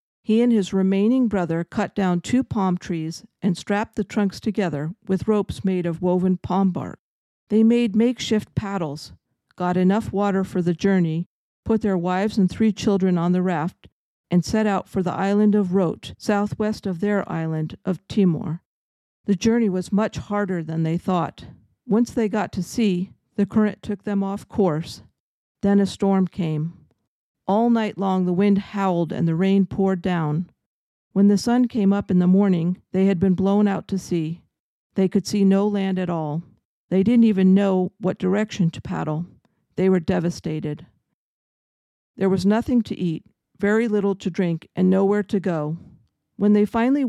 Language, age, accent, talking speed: English, 50-69, American, 175 wpm